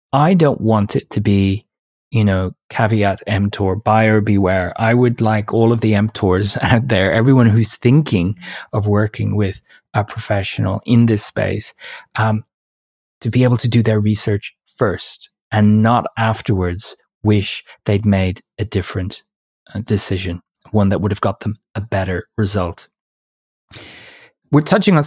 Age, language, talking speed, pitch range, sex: 20-39, English, 150 wpm, 100-120 Hz, male